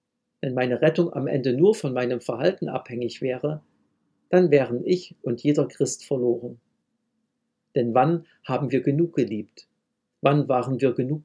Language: German